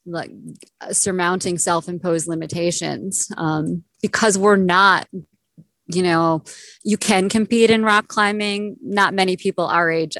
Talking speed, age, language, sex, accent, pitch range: 125 wpm, 20-39, English, female, American, 170-200 Hz